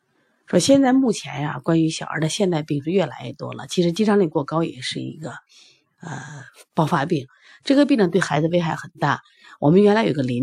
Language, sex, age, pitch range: Chinese, female, 30-49, 160-245 Hz